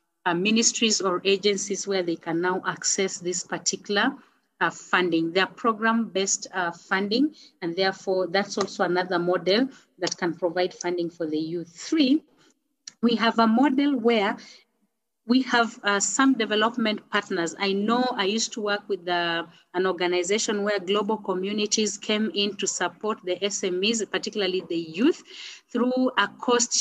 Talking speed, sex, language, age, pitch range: 150 wpm, female, English, 30-49, 190-235 Hz